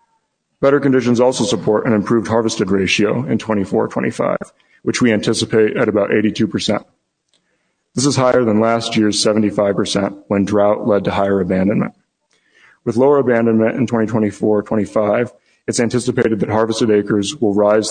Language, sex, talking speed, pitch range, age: English, male, 135 wpm, 105-115 Hz, 40-59